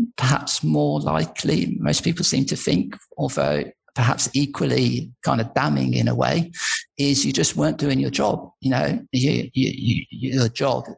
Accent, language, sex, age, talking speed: British, English, male, 50-69, 155 wpm